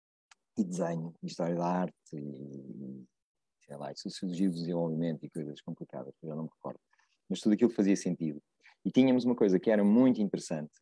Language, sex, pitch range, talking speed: Portuguese, male, 85-115 Hz, 190 wpm